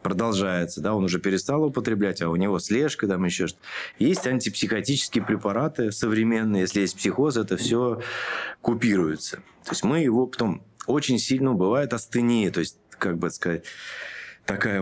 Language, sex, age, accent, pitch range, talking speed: Russian, male, 20-39, native, 95-125 Hz, 155 wpm